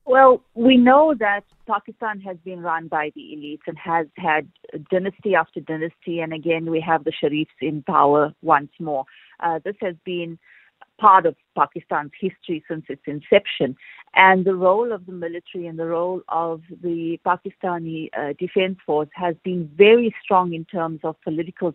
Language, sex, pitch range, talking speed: English, female, 160-185 Hz, 170 wpm